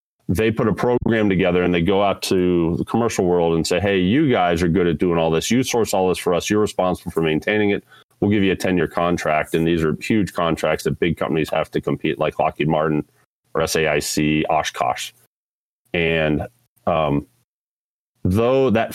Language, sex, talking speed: English, male, 200 wpm